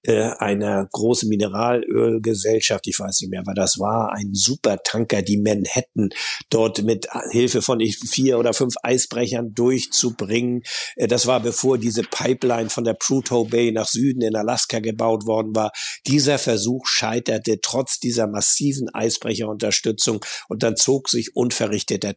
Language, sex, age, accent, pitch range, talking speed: German, male, 60-79, German, 110-135 Hz, 140 wpm